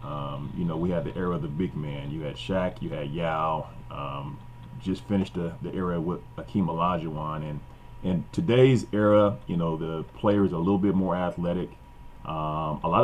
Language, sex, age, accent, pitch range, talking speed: English, male, 30-49, American, 85-120 Hz, 200 wpm